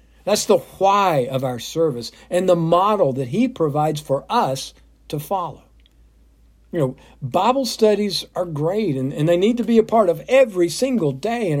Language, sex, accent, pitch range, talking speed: English, male, American, 130-200 Hz, 180 wpm